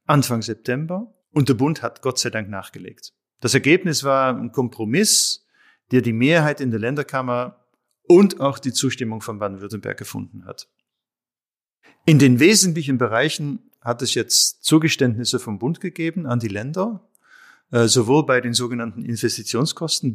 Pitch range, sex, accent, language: 115-150 Hz, male, German, German